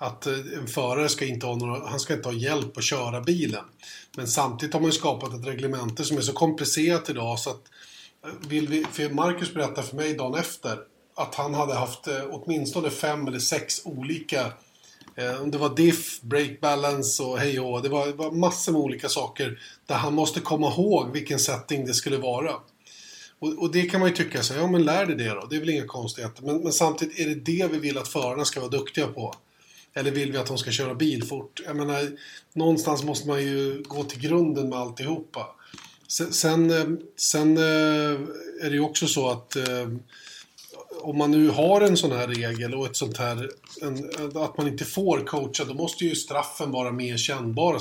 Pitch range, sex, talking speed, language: 135-155 Hz, male, 200 wpm, Swedish